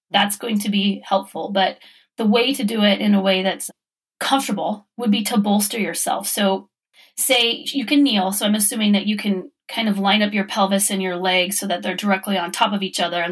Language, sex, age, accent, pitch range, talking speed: English, female, 30-49, American, 195-235 Hz, 230 wpm